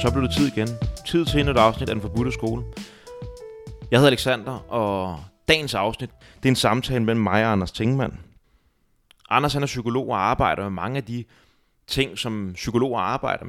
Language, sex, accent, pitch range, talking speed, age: Danish, male, native, 95-120 Hz, 190 wpm, 30-49